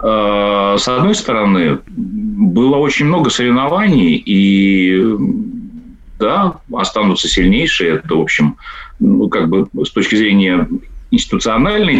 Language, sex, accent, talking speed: Russian, male, native, 105 wpm